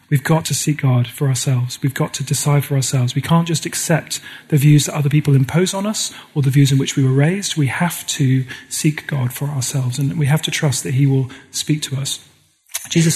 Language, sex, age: English, male, 40-59